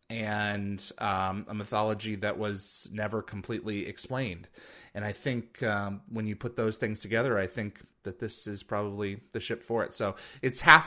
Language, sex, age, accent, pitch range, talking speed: English, male, 30-49, American, 95-125 Hz, 175 wpm